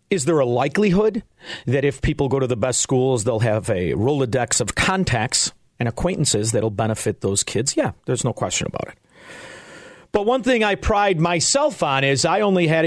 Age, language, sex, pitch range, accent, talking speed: 40-59, English, male, 120-160 Hz, American, 195 wpm